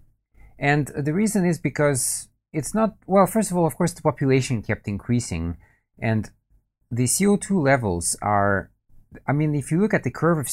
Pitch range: 105-145 Hz